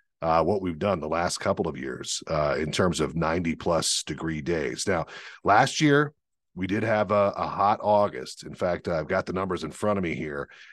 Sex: male